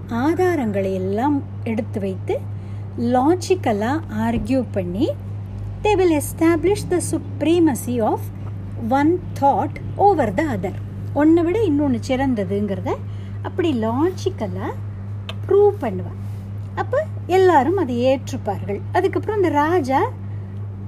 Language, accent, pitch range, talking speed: Tamil, native, 100-120 Hz, 85 wpm